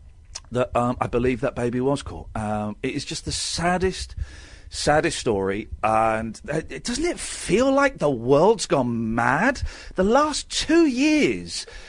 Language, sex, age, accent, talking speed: English, male, 40-59, British, 155 wpm